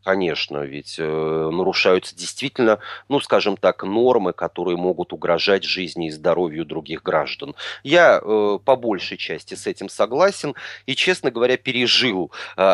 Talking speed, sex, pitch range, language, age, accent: 140 wpm, male, 85-130 Hz, Russian, 30-49, native